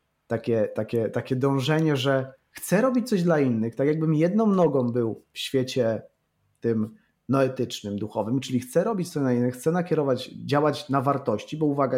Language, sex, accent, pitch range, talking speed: Polish, male, native, 115-155 Hz, 160 wpm